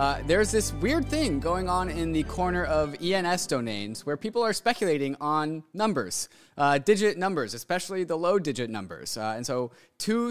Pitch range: 125-180 Hz